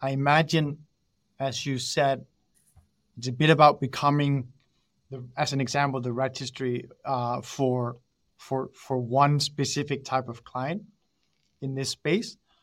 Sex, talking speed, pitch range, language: male, 135 wpm, 135-160 Hz, English